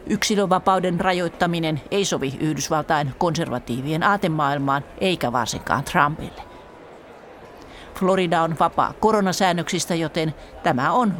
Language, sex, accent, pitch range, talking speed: Finnish, female, native, 155-195 Hz, 90 wpm